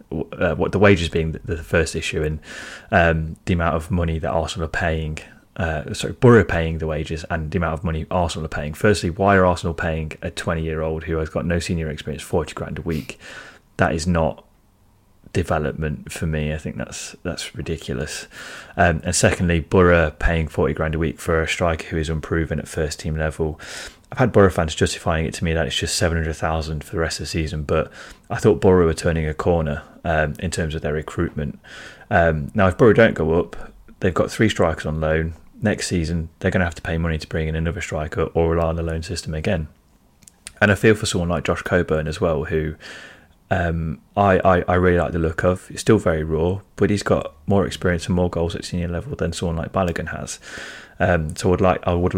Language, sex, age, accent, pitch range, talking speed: English, male, 30-49, British, 80-90 Hz, 225 wpm